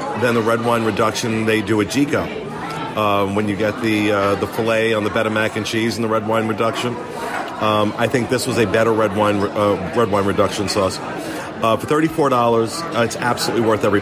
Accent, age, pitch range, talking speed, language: American, 40-59, 110-125 Hz, 230 wpm, English